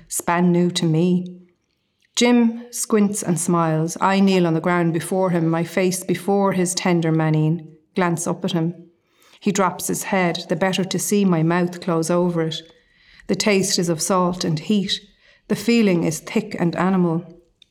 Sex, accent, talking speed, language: female, Irish, 175 wpm, English